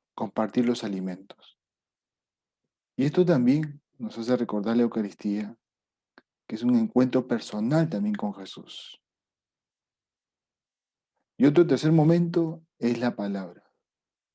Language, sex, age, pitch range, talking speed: Spanish, male, 40-59, 110-150 Hz, 110 wpm